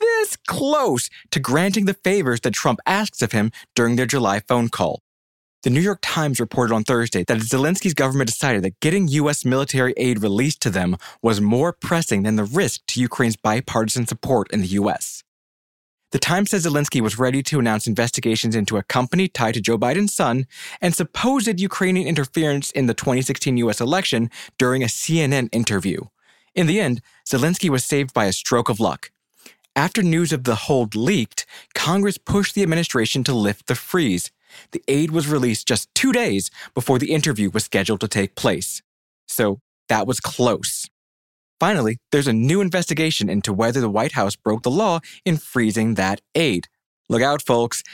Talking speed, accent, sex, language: 175 wpm, American, male, English